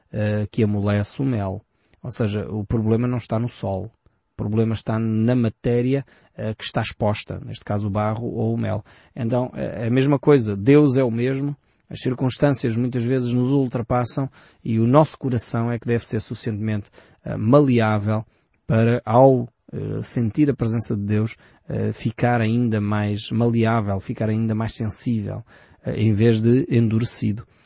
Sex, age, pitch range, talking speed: male, 20-39, 110-130 Hz, 155 wpm